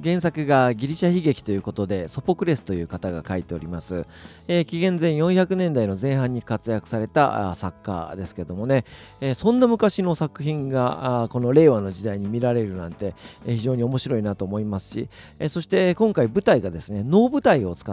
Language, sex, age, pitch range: Japanese, male, 40-59, 100-150 Hz